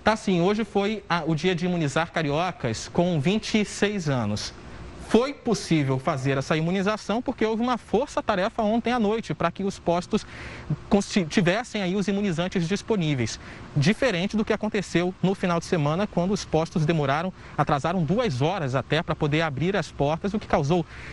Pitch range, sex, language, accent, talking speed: 150-205 Hz, male, Portuguese, Brazilian, 165 wpm